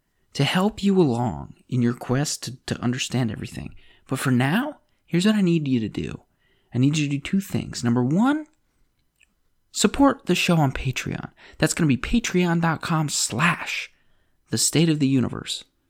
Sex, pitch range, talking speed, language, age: male, 120-180 Hz, 175 wpm, English, 30-49